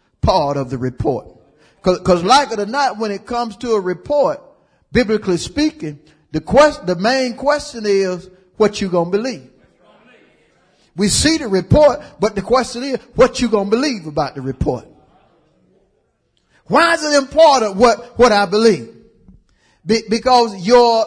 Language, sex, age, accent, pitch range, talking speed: English, male, 50-69, American, 160-245 Hz, 155 wpm